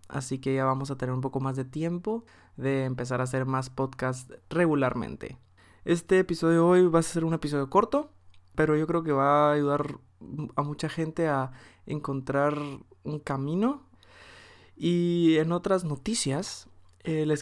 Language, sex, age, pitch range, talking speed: Spanish, male, 20-39, 135-165 Hz, 165 wpm